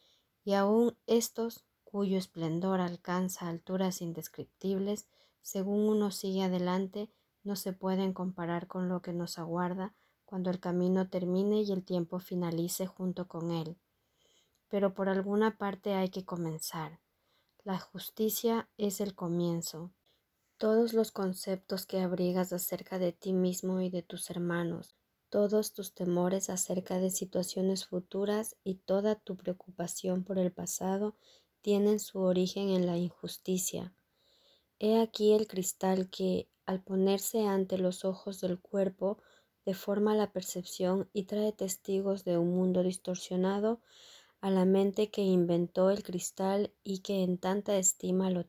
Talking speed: 140 wpm